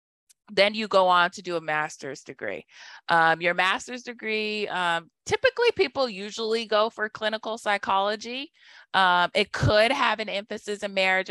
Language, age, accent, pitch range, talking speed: English, 30-49, American, 170-220 Hz, 155 wpm